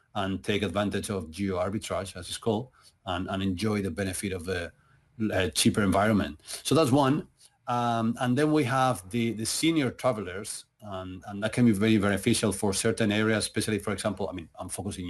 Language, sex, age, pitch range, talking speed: English, male, 40-59, 100-125 Hz, 190 wpm